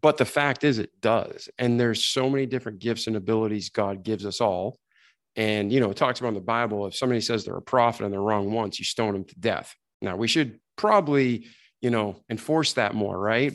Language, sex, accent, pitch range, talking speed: English, male, American, 110-130 Hz, 230 wpm